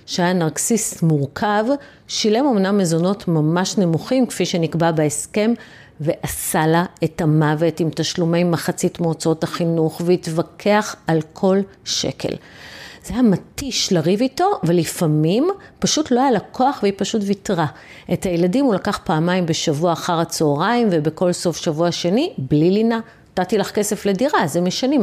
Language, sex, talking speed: Hebrew, female, 140 wpm